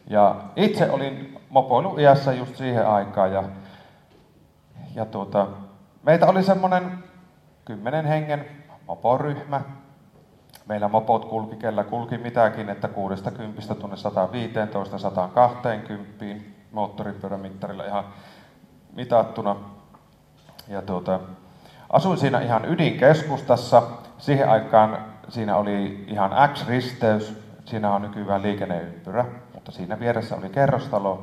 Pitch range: 100-135 Hz